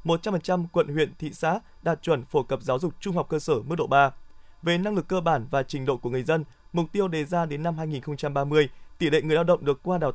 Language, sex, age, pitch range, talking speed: Vietnamese, male, 20-39, 145-180 Hz, 255 wpm